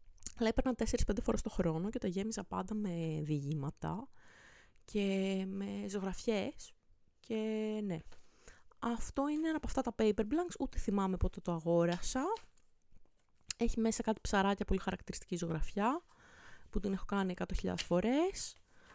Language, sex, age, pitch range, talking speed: Greek, female, 20-39, 180-225 Hz, 130 wpm